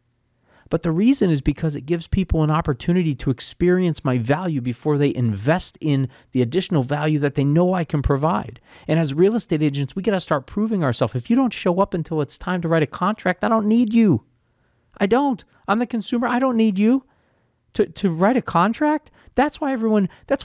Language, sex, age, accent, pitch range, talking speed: English, male, 40-59, American, 135-220 Hz, 210 wpm